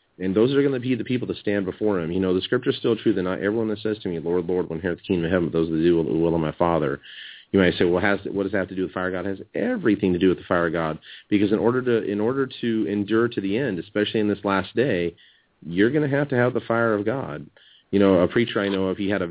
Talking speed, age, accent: 325 wpm, 30-49, American